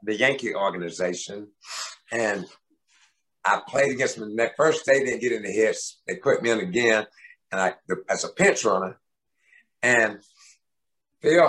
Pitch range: 115-155 Hz